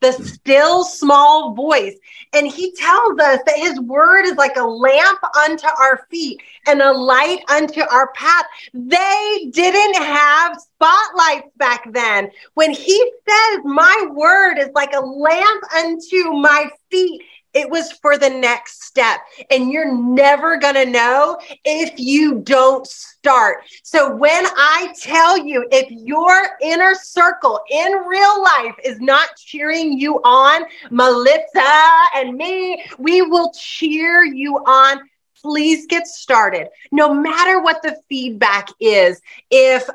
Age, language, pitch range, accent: 30-49, English, 285-360 Hz, American